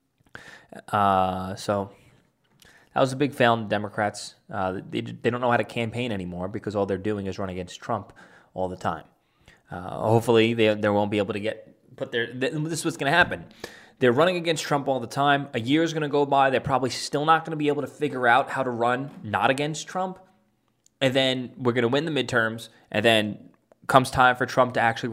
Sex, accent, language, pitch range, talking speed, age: male, American, English, 120-165 Hz, 225 wpm, 20-39